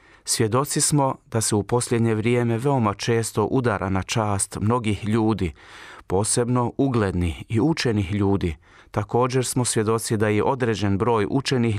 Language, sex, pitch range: Croatian, male, 105-130 Hz